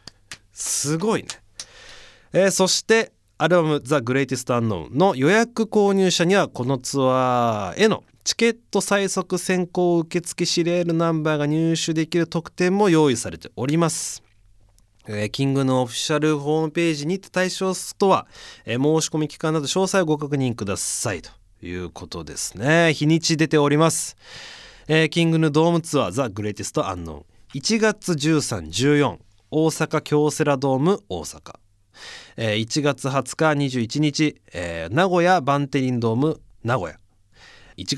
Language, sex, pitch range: Japanese, male, 115-165 Hz